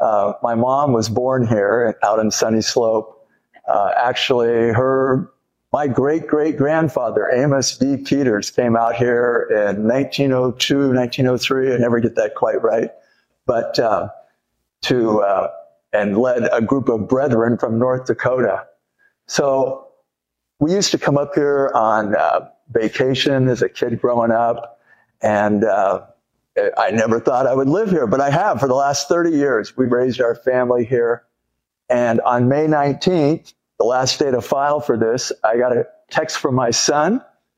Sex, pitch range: male, 115-150 Hz